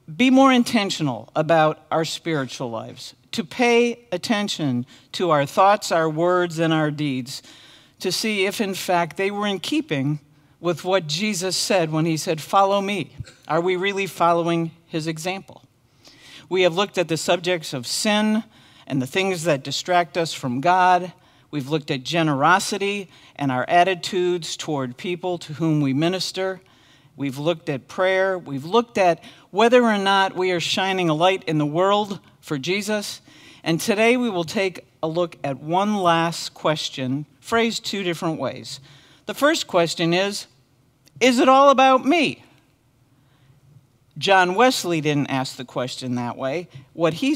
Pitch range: 140-190 Hz